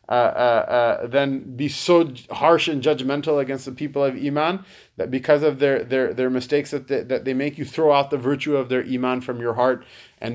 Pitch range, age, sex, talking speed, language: 120-135 Hz, 20-39, male, 225 wpm, English